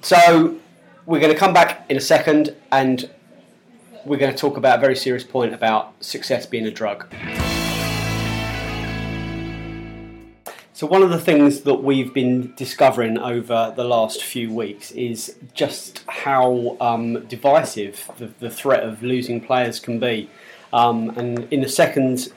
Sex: male